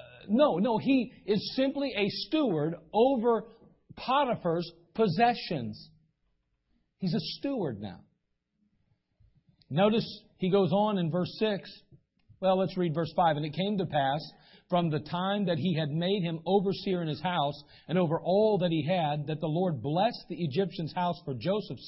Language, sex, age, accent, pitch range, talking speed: English, male, 50-69, American, 145-195 Hz, 160 wpm